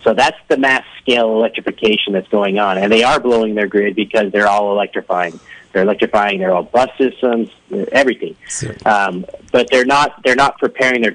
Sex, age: male, 40-59